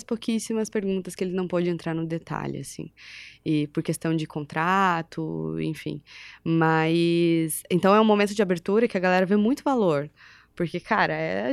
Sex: female